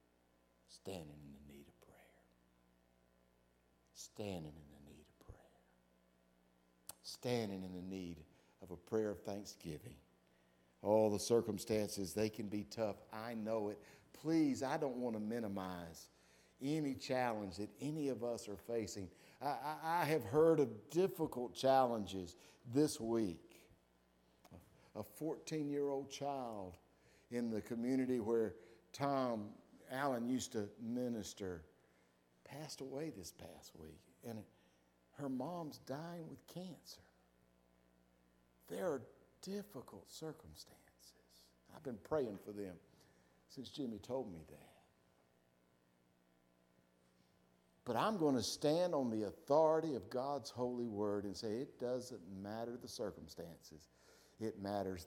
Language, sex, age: English, male, 60-79